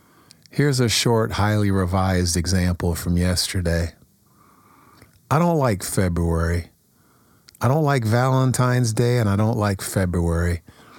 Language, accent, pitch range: English, American, 90-115 Hz